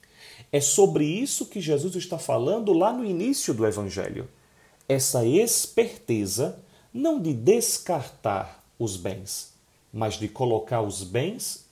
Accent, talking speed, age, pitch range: Brazilian, 125 wpm, 40-59, 105-160 Hz